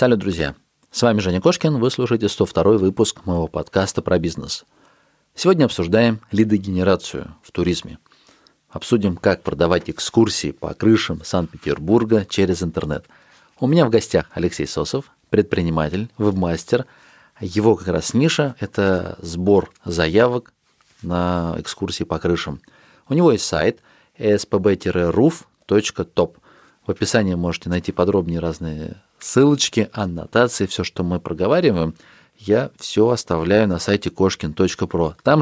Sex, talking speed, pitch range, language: male, 120 wpm, 85-110 Hz, Russian